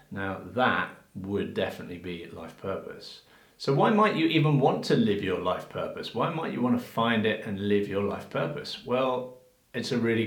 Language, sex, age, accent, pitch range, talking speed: English, male, 40-59, British, 100-120 Hz, 200 wpm